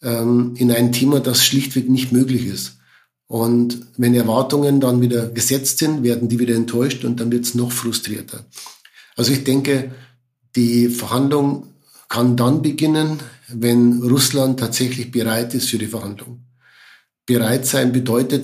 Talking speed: 145 wpm